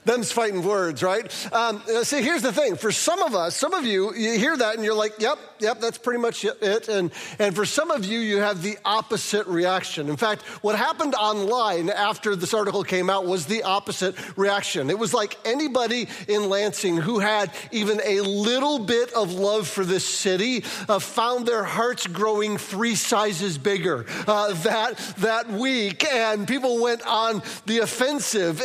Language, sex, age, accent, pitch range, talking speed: Finnish, male, 40-59, American, 205-245 Hz, 185 wpm